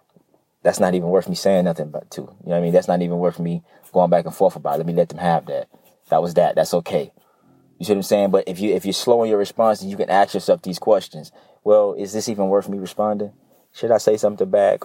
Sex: male